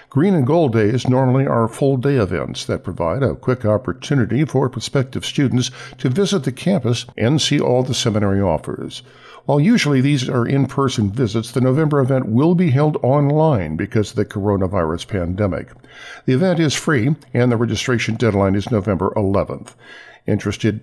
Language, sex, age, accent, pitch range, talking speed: English, male, 50-69, American, 105-140 Hz, 165 wpm